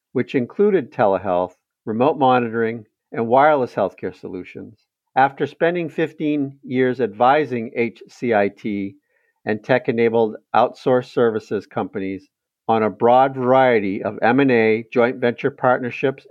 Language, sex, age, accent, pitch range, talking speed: English, male, 50-69, American, 110-140 Hz, 105 wpm